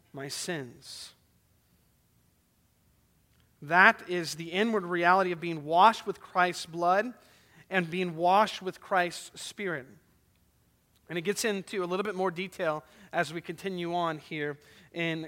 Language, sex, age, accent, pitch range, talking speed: English, male, 30-49, American, 180-255 Hz, 135 wpm